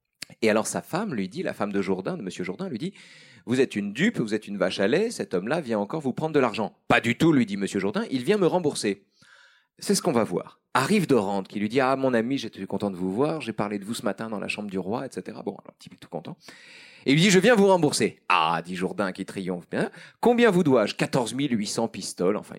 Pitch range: 100-155 Hz